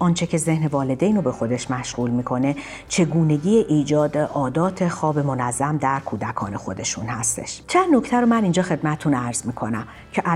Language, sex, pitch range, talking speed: Persian, female, 135-185 Hz, 155 wpm